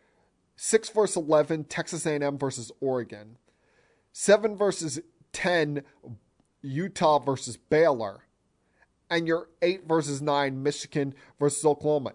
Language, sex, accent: English, male, American